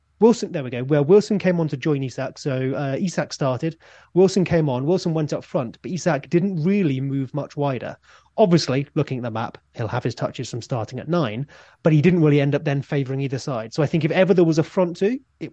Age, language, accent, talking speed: 30-49, English, British, 245 wpm